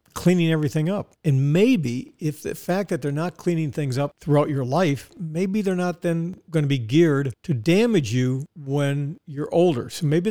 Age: 50-69